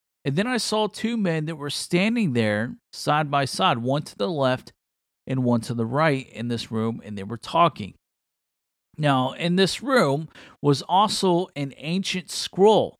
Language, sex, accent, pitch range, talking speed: English, male, American, 130-175 Hz, 175 wpm